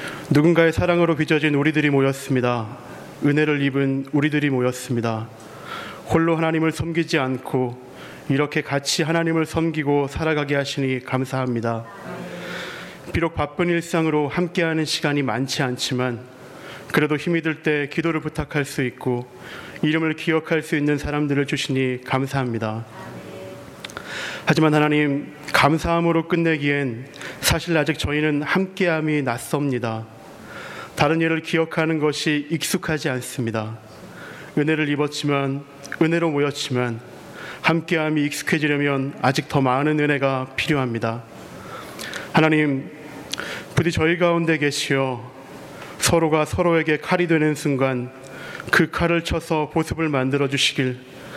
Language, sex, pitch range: Korean, male, 130-160 Hz